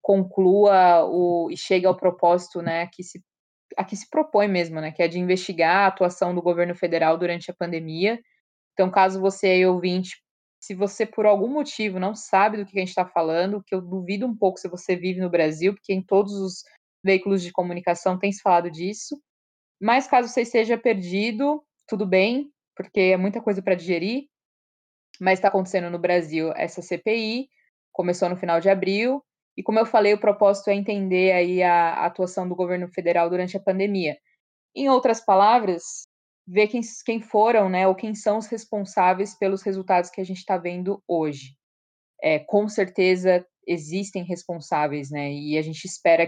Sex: female